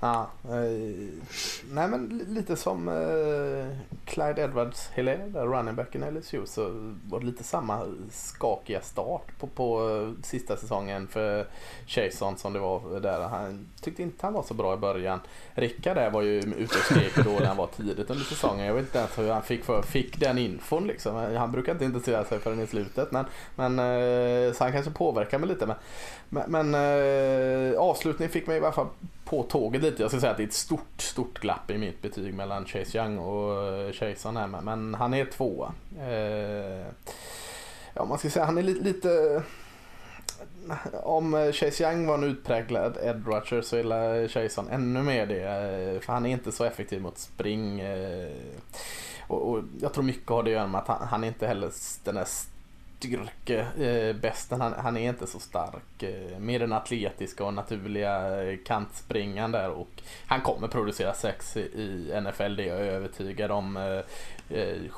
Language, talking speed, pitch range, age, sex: Swedish, 180 wpm, 100-130 Hz, 20-39, male